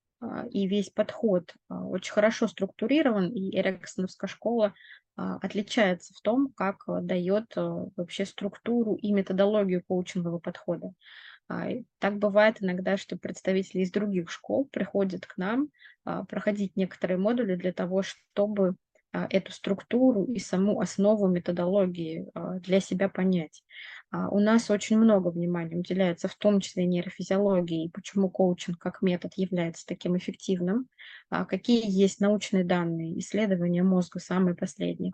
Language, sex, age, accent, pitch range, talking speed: Russian, female, 20-39, native, 180-205 Hz, 120 wpm